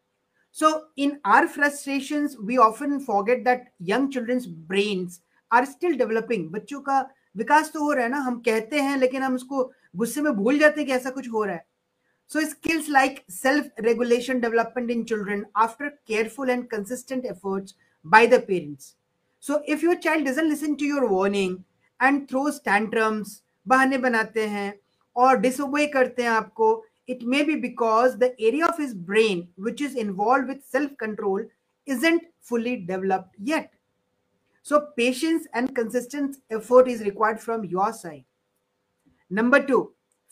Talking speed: 155 wpm